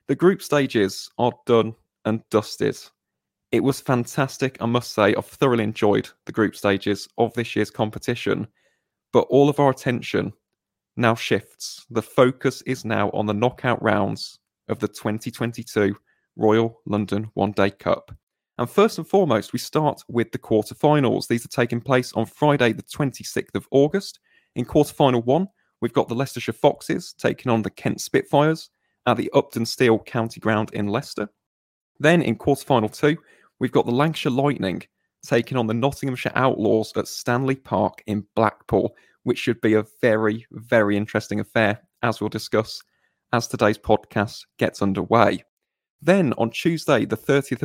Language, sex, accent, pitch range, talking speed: English, male, British, 110-140 Hz, 160 wpm